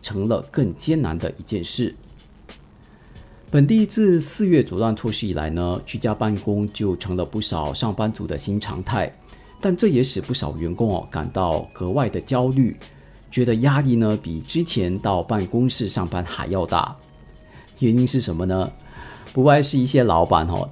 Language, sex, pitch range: Chinese, male, 95-130 Hz